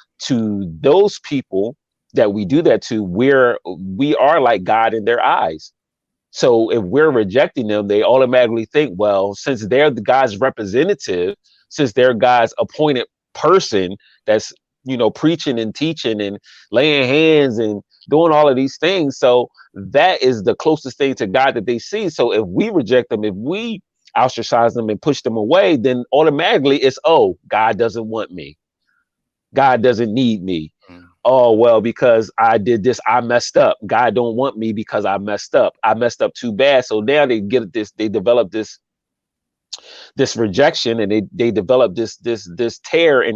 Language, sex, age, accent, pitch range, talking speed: English, male, 30-49, American, 105-135 Hz, 175 wpm